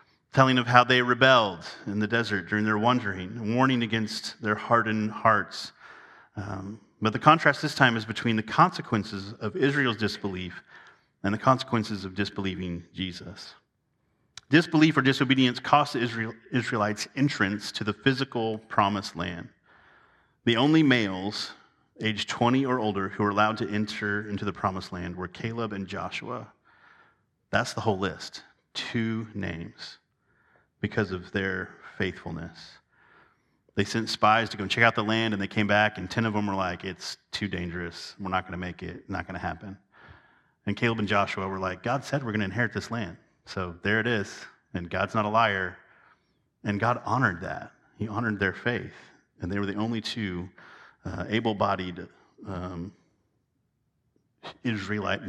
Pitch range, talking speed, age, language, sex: 95-115 Hz, 160 wpm, 30-49, English, male